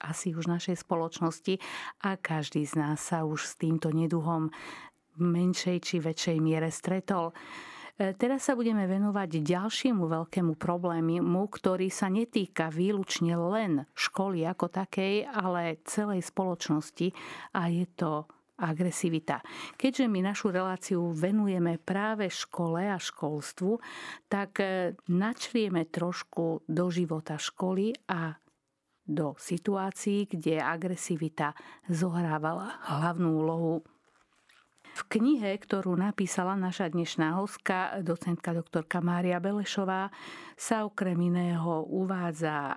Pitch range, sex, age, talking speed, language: 165-195 Hz, female, 50-69, 110 wpm, Slovak